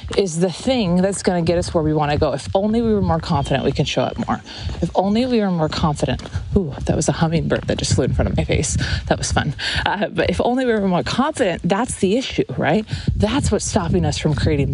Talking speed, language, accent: 255 wpm, English, American